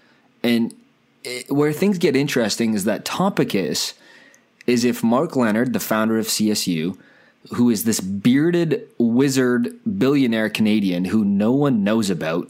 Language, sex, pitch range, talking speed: English, male, 100-140 Hz, 135 wpm